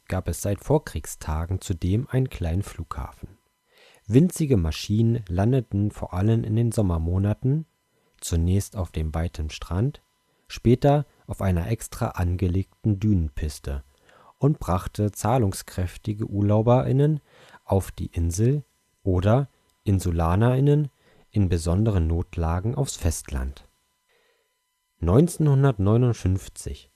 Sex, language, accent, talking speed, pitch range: male, German, German, 95 wpm, 85-120 Hz